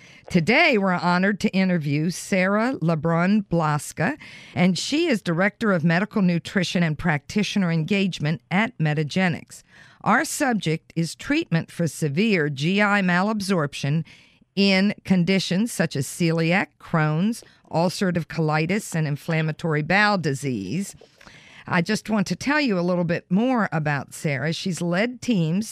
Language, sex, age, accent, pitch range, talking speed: English, female, 50-69, American, 155-200 Hz, 125 wpm